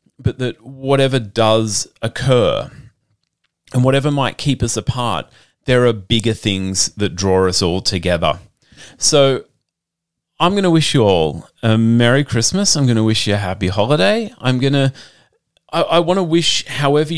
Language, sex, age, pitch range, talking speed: English, male, 30-49, 100-135 Hz, 160 wpm